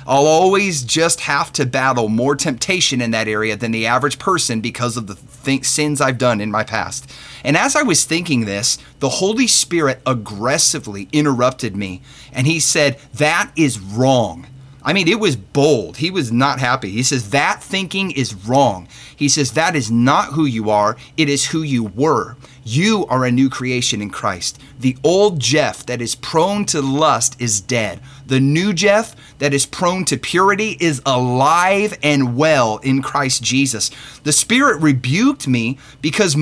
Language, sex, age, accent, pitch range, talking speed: English, male, 30-49, American, 125-155 Hz, 175 wpm